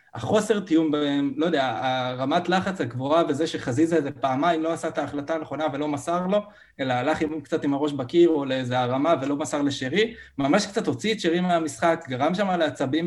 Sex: male